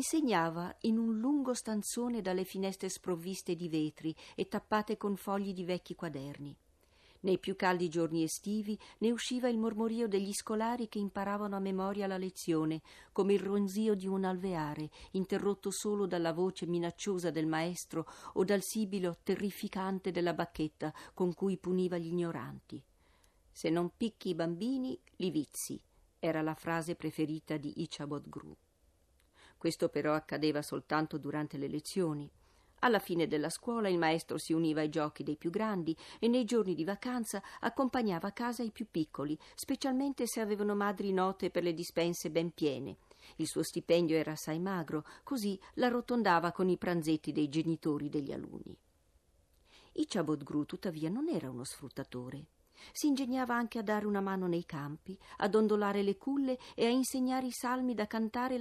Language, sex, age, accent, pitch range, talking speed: Italian, female, 50-69, native, 155-215 Hz, 160 wpm